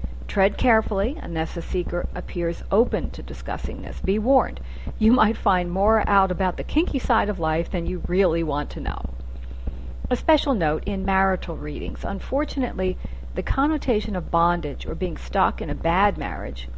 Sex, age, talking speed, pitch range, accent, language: female, 50-69, 170 wpm, 155-225 Hz, American, English